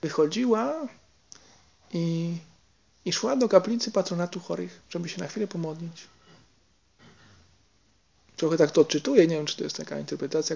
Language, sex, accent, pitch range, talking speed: Polish, male, native, 140-195 Hz, 135 wpm